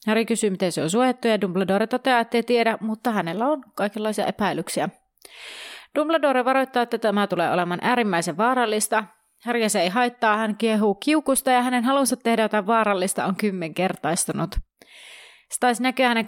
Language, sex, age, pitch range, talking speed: Finnish, female, 30-49, 190-240 Hz, 160 wpm